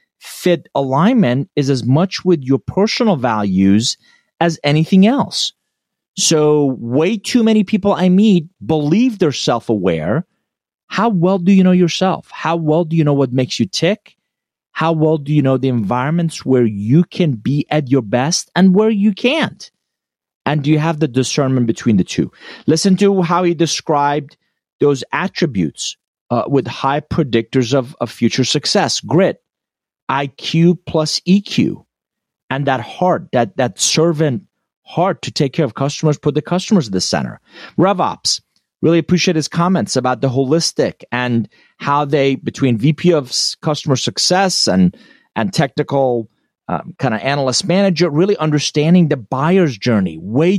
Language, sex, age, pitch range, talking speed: English, male, 30-49, 135-185 Hz, 155 wpm